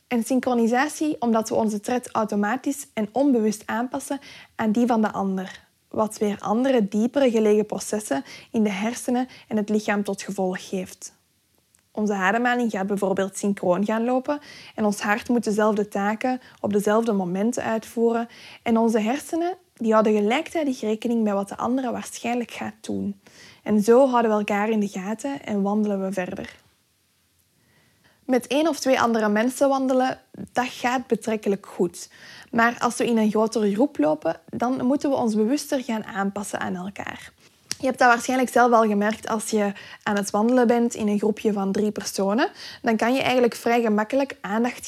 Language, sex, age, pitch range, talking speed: Dutch, female, 20-39, 210-250 Hz, 170 wpm